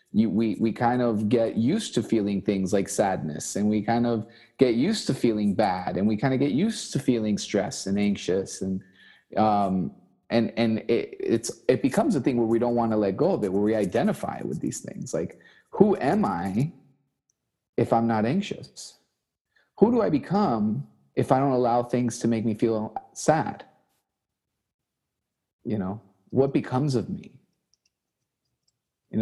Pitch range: 105-125 Hz